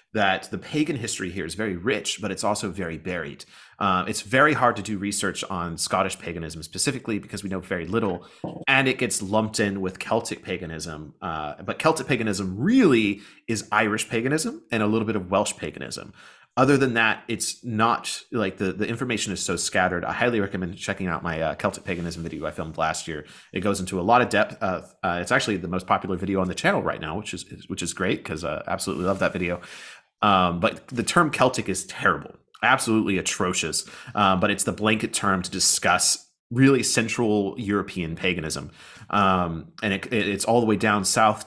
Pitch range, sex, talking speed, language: 90-110 Hz, male, 200 wpm, English